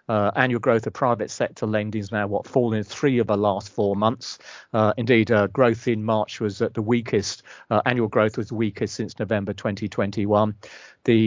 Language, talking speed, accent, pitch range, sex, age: English, 200 wpm, British, 105-120 Hz, male, 40-59